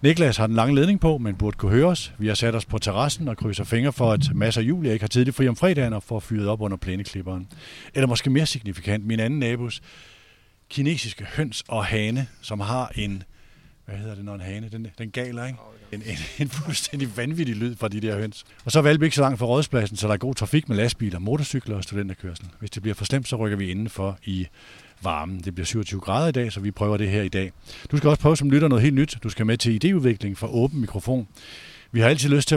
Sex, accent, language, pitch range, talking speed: male, native, Danish, 105-135 Hz, 250 wpm